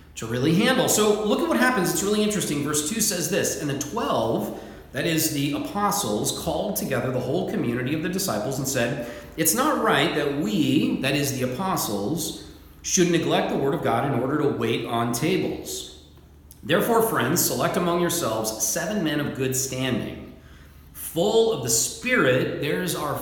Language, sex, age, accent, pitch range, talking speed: English, male, 40-59, American, 115-175 Hz, 180 wpm